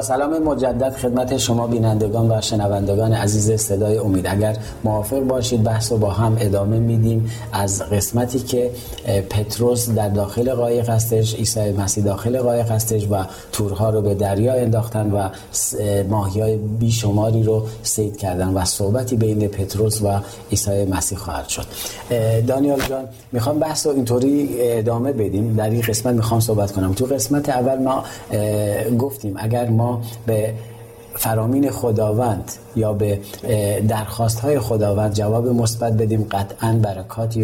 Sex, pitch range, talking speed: male, 105-120 Hz, 140 wpm